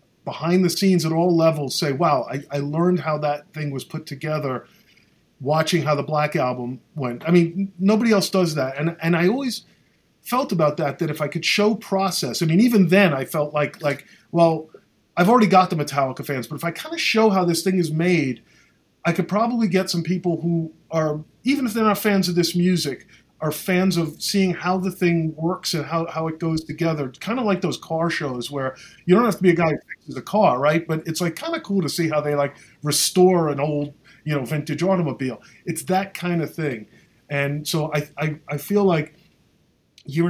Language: English